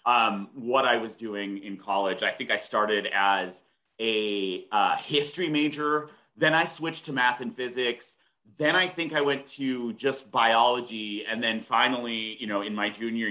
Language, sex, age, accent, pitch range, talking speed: English, male, 30-49, American, 105-140 Hz, 175 wpm